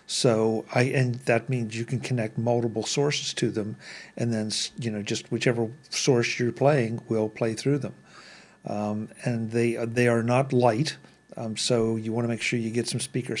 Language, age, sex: English, 50-69, male